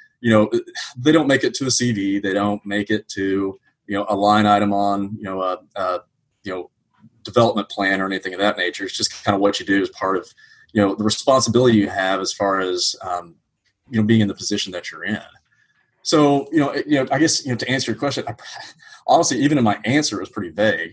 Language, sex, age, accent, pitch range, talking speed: English, male, 30-49, American, 100-120 Hz, 245 wpm